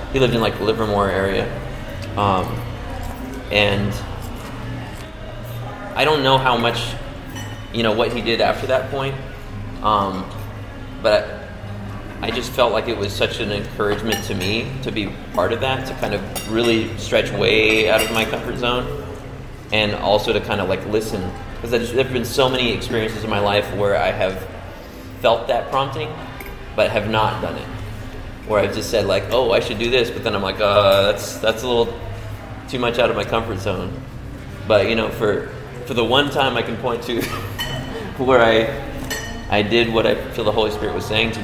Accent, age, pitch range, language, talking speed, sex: American, 30-49, 100-120 Hz, English, 190 wpm, male